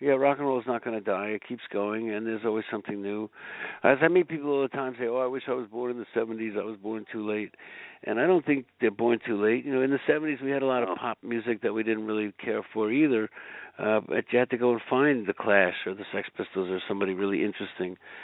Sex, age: male, 60-79